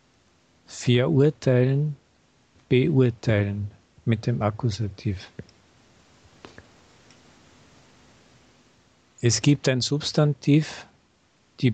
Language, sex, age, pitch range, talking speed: German, male, 50-69, 105-130 Hz, 50 wpm